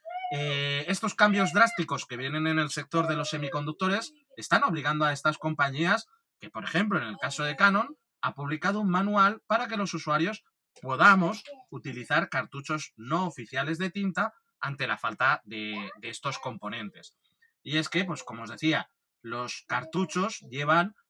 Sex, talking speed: male, 160 wpm